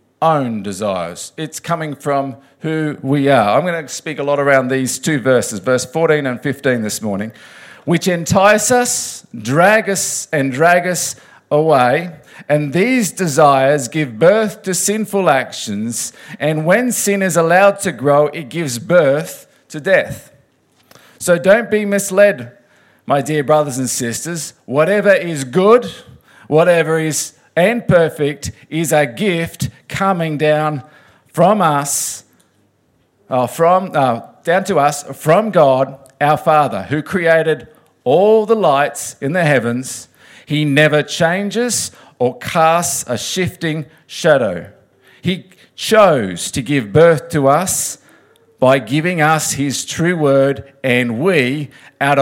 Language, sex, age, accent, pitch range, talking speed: English, male, 50-69, Australian, 135-175 Hz, 135 wpm